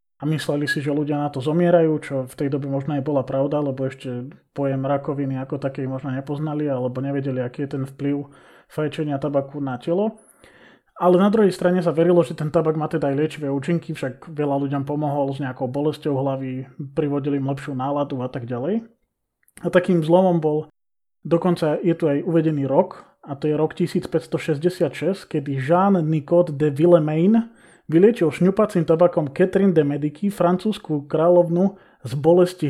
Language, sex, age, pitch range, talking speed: Slovak, male, 20-39, 140-170 Hz, 170 wpm